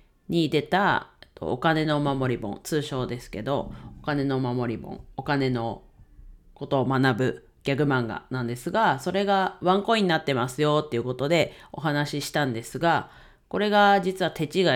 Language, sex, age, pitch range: Japanese, female, 40-59, 130-185 Hz